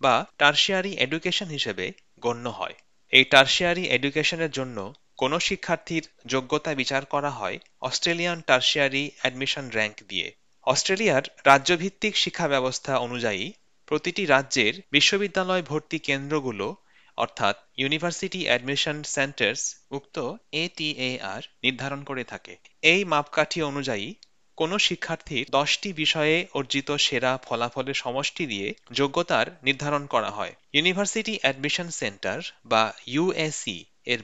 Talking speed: 105 wpm